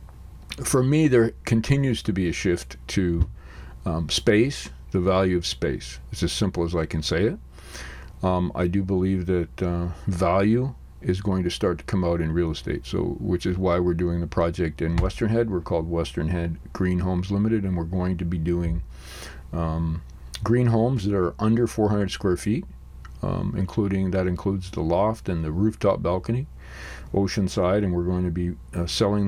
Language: English